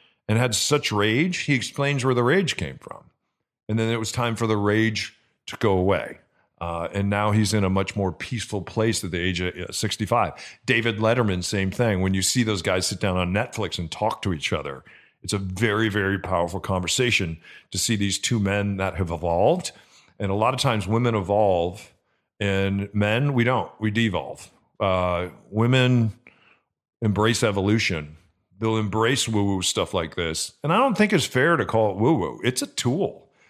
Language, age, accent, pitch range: English, 40-59, American, 95-120 Hz